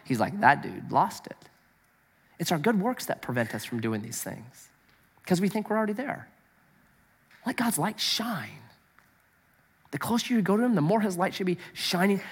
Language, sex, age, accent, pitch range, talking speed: English, male, 30-49, American, 145-210 Hz, 195 wpm